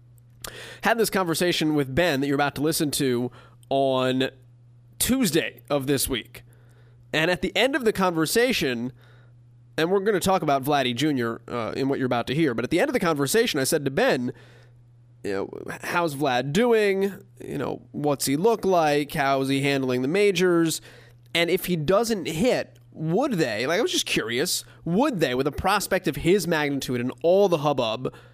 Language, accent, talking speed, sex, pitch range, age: English, American, 190 wpm, male, 120-160 Hz, 20-39